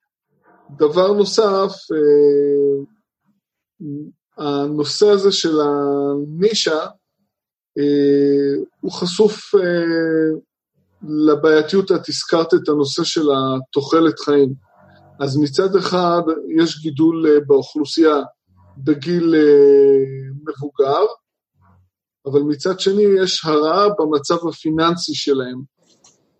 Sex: male